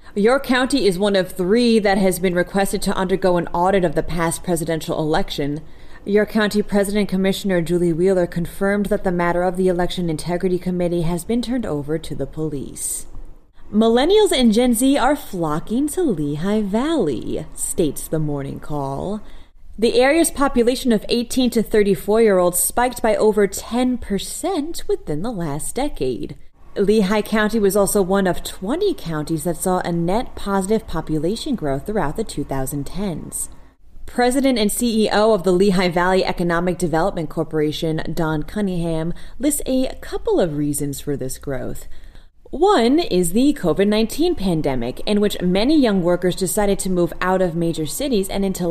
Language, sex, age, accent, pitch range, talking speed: English, female, 30-49, American, 165-225 Hz, 160 wpm